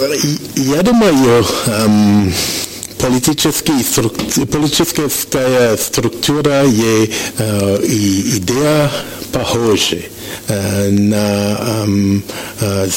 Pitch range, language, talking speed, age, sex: 105-130 Hz, Russian, 65 wpm, 60-79, male